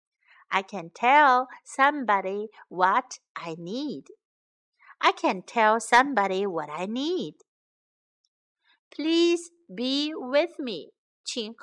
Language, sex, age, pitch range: Chinese, female, 60-79, 220-320 Hz